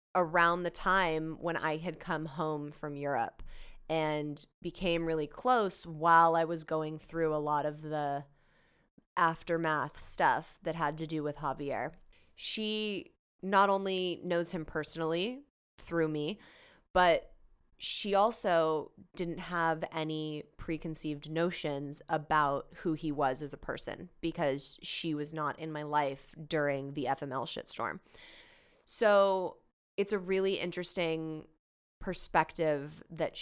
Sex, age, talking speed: female, 20-39, 130 wpm